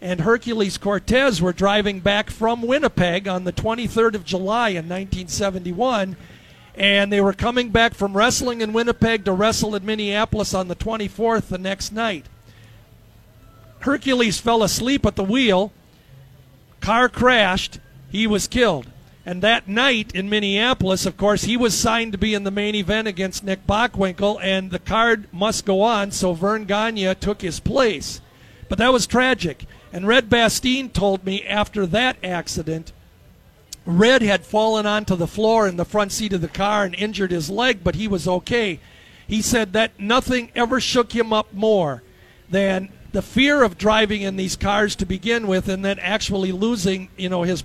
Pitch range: 180-225 Hz